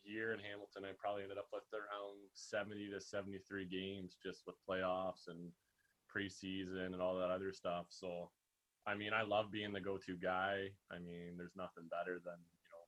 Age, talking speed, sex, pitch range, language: 20-39, 185 wpm, male, 90-100 Hz, English